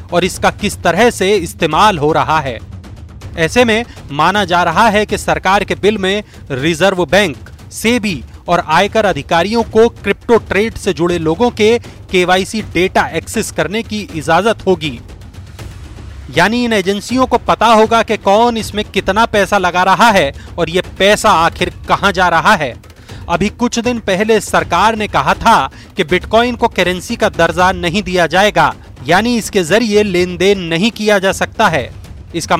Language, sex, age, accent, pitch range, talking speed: English, male, 30-49, Indian, 155-210 Hz, 125 wpm